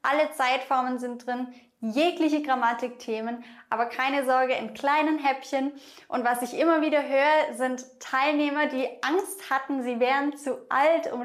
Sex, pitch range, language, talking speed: female, 225-280 Hz, English, 150 wpm